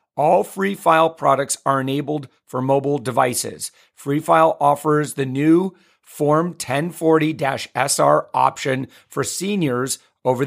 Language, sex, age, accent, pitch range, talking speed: English, male, 40-59, American, 130-170 Hz, 120 wpm